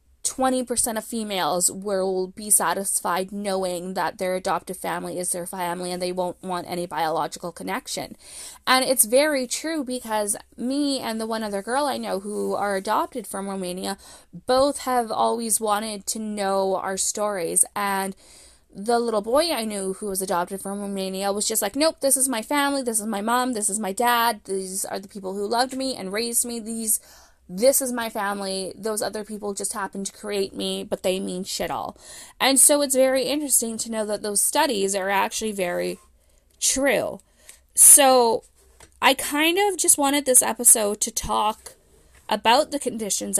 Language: English